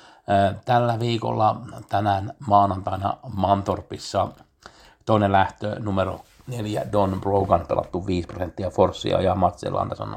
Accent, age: native, 50-69